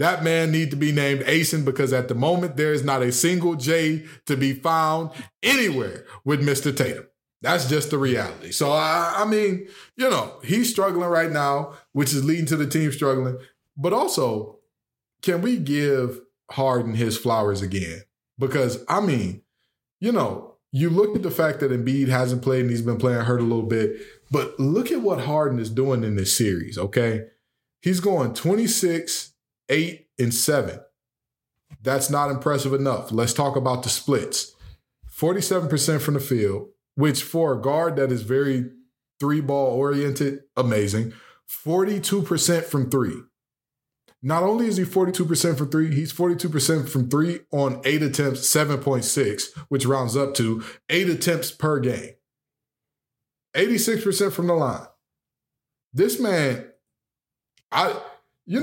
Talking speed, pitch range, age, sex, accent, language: 155 wpm, 130-165 Hz, 20-39, male, American, English